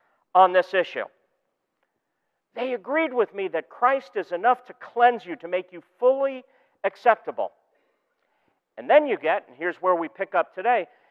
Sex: male